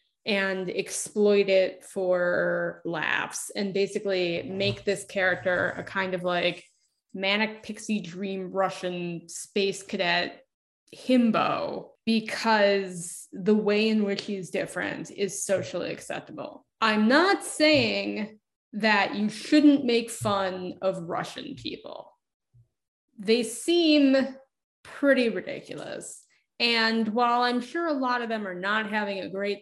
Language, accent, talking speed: English, American, 120 wpm